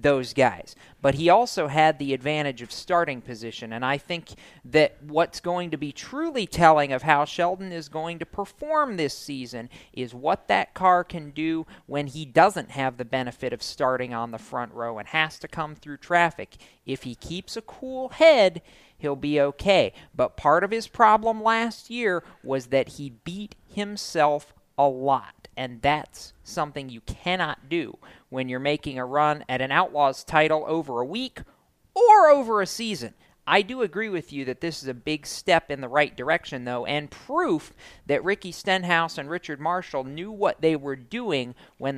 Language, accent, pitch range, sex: English, American, 130-175 Hz, male